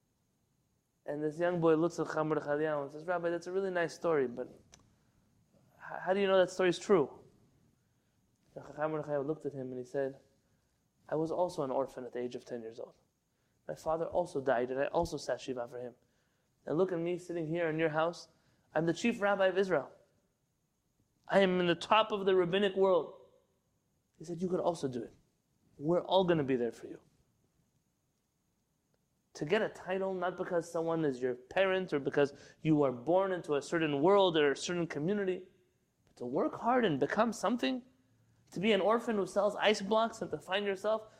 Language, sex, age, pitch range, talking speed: English, male, 20-39, 140-205 Hz, 200 wpm